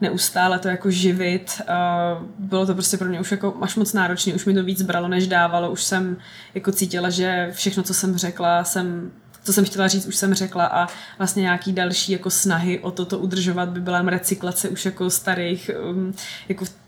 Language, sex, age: Czech, female, 20-39